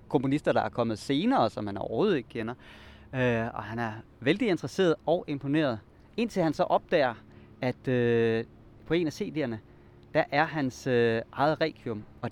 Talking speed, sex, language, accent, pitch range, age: 170 wpm, male, Danish, native, 110-155 Hz, 30-49